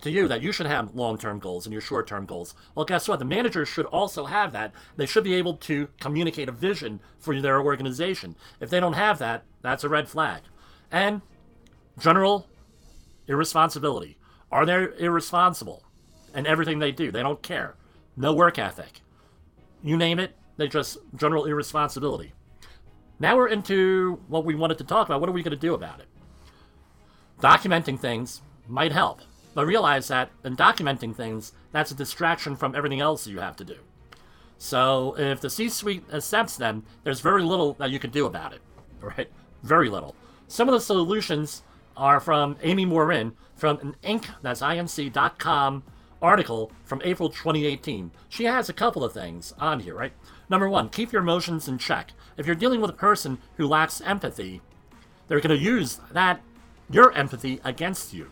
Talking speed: 175 wpm